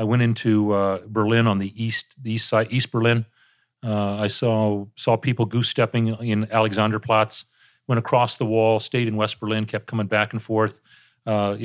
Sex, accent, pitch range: male, American, 105-120 Hz